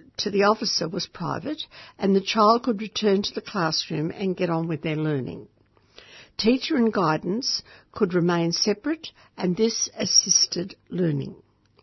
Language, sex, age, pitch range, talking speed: English, female, 60-79, 175-225 Hz, 145 wpm